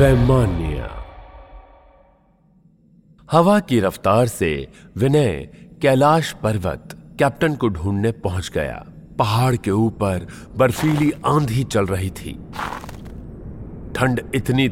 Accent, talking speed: native, 90 wpm